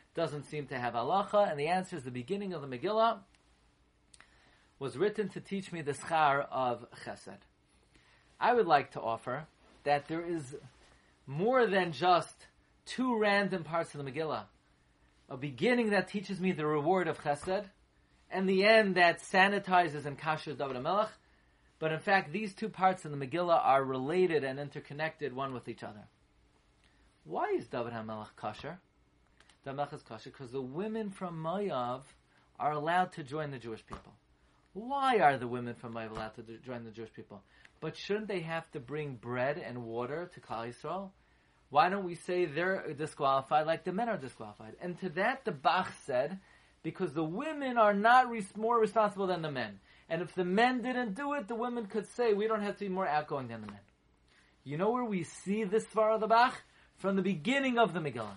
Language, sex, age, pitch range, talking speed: English, male, 40-59, 125-200 Hz, 185 wpm